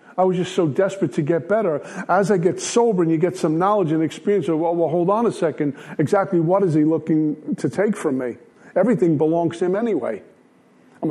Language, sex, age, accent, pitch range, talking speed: English, male, 50-69, American, 160-195 Hz, 215 wpm